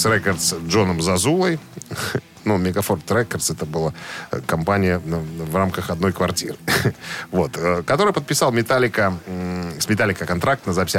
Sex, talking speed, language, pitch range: male, 120 wpm, Russian, 95-125 Hz